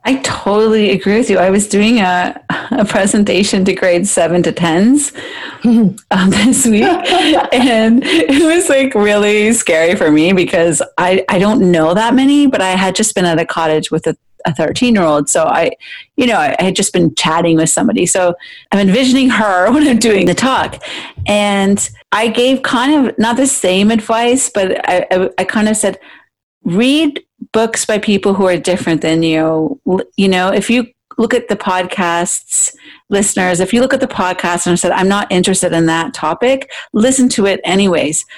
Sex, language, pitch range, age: female, English, 180-235 Hz, 40-59